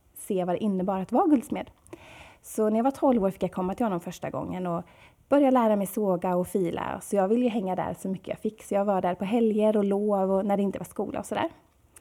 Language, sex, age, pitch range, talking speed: Swedish, female, 30-49, 190-235 Hz, 270 wpm